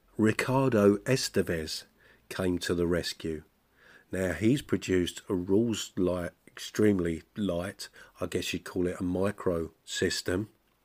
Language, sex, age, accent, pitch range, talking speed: English, male, 50-69, British, 90-110 Hz, 115 wpm